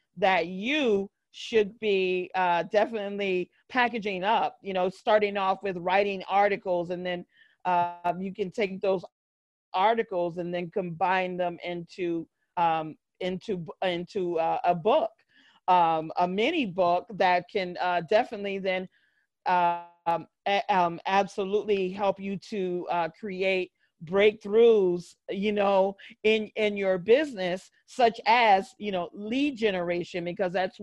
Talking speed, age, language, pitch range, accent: 130 wpm, 40-59, English, 180-210 Hz, American